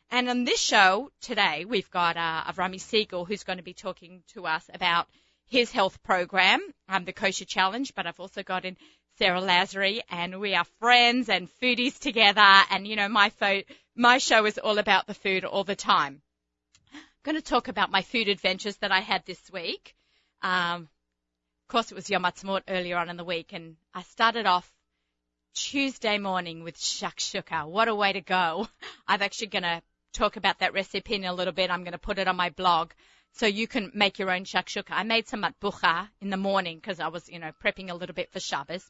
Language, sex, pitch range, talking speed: English, female, 180-220 Hz, 215 wpm